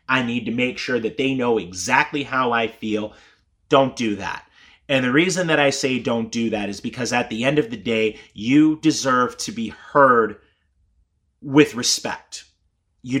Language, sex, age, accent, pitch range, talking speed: English, male, 30-49, American, 110-145 Hz, 180 wpm